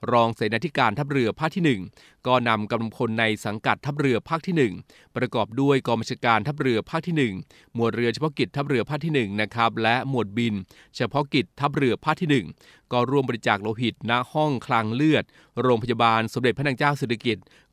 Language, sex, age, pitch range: Thai, male, 20-39, 115-135 Hz